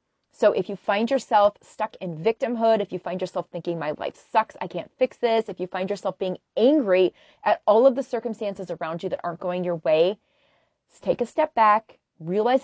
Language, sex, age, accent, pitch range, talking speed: English, female, 30-49, American, 185-245 Hz, 205 wpm